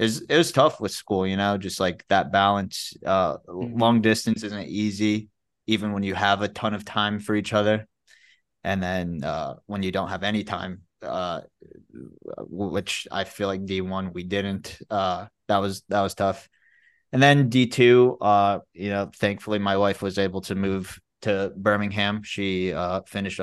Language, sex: English, male